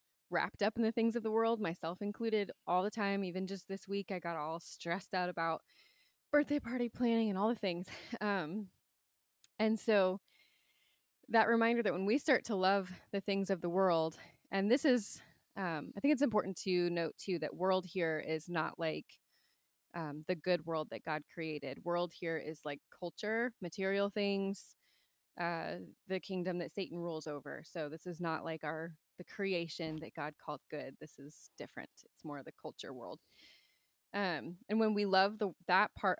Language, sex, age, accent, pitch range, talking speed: English, female, 20-39, American, 165-210 Hz, 185 wpm